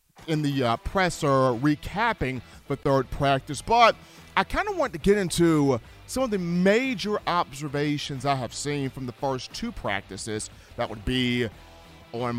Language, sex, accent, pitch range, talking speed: English, male, American, 120-180 Hz, 160 wpm